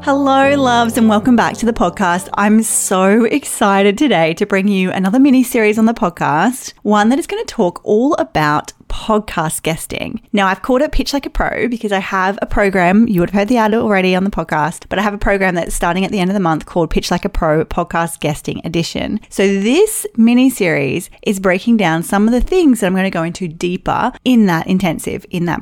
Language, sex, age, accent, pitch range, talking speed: English, female, 30-49, Australian, 180-235 Hz, 230 wpm